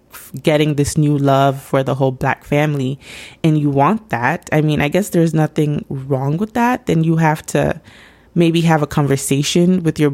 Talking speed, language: 190 wpm, English